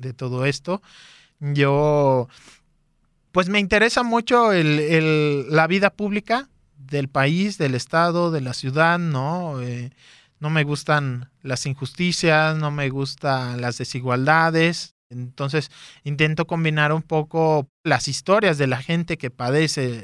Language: Spanish